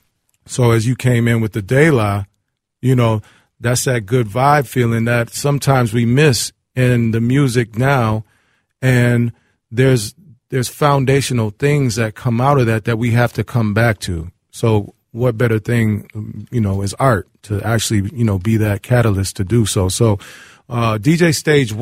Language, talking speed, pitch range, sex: English, 170 wpm, 105-125 Hz, male